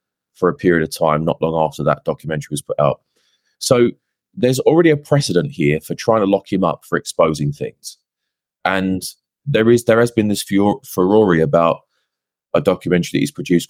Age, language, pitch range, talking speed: 20-39, English, 85-120 Hz, 190 wpm